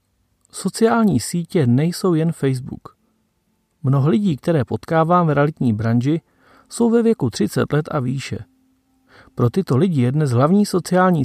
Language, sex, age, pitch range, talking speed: Czech, male, 40-59, 125-180 Hz, 140 wpm